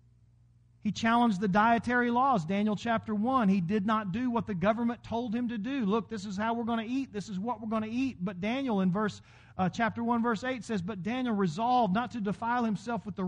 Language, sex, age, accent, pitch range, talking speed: English, male, 40-59, American, 155-240 Hz, 240 wpm